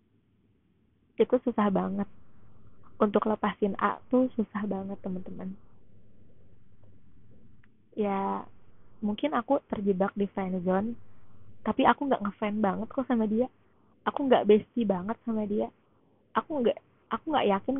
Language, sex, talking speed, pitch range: Indonesian, female, 120 wpm, 195-230 Hz